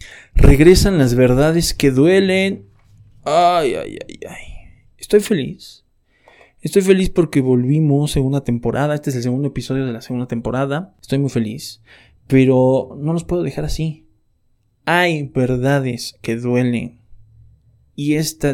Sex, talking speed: male, 135 wpm